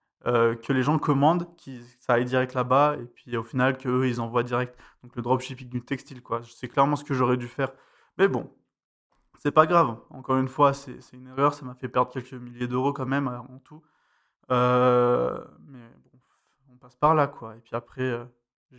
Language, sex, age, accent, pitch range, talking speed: French, male, 20-39, French, 125-140 Hz, 215 wpm